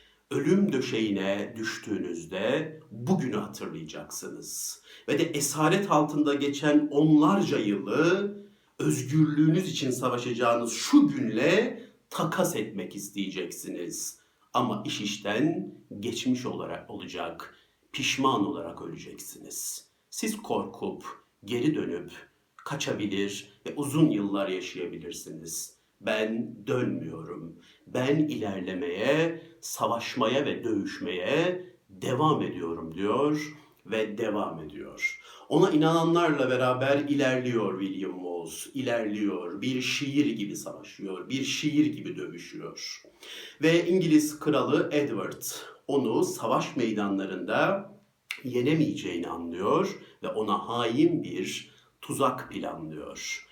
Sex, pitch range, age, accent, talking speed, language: male, 105-155 Hz, 50-69, native, 90 wpm, Turkish